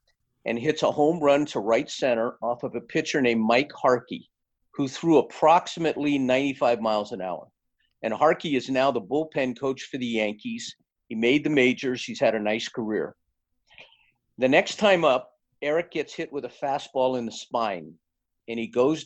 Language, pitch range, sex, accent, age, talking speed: English, 115-145 Hz, male, American, 50-69, 180 wpm